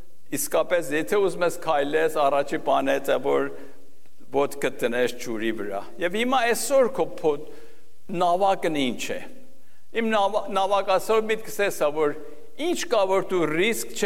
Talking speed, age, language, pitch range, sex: 85 wpm, 60-79, English, 145-220 Hz, male